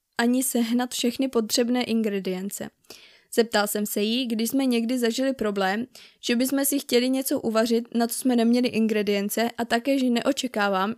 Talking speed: 160 wpm